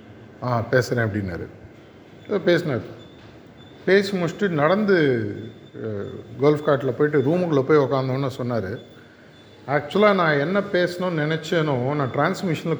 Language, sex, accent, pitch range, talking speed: Tamil, male, native, 120-165 Hz, 100 wpm